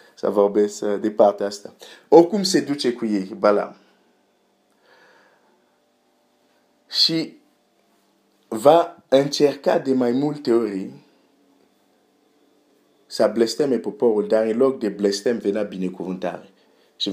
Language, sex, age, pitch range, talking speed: Romanian, male, 50-69, 105-150 Hz, 110 wpm